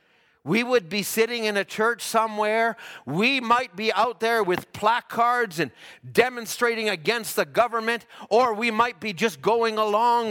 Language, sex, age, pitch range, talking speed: English, male, 40-59, 180-245 Hz, 155 wpm